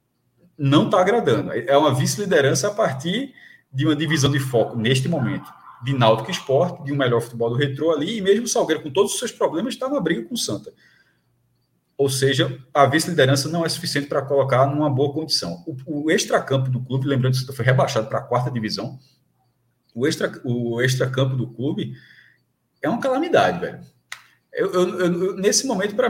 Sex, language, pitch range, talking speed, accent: male, Portuguese, 125-195 Hz, 185 wpm, Brazilian